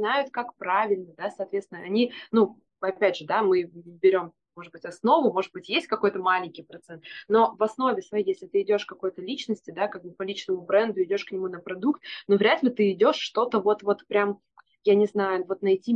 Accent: native